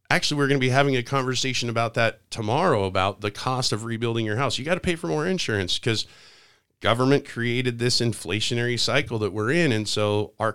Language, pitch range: English, 100-130 Hz